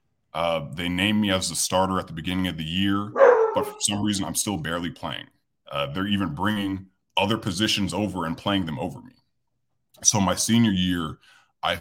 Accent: American